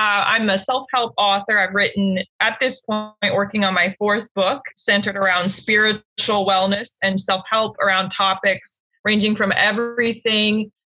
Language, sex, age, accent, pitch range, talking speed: English, female, 20-39, American, 190-225 Hz, 145 wpm